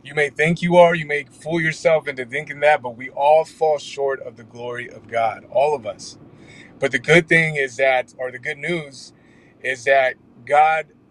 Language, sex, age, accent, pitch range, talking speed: English, male, 30-49, American, 140-175 Hz, 205 wpm